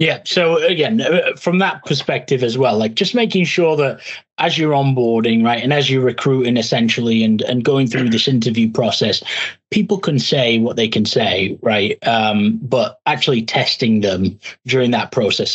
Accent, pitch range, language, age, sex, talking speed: British, 115-135 Hz, English, 30-49, male, 175 wpm